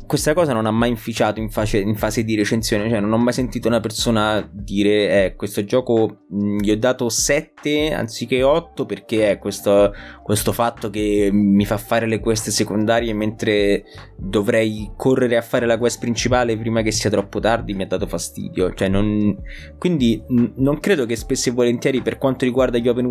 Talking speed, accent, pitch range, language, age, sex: 195 wpm, native, 105-125 Hz, Italian, 20-39, male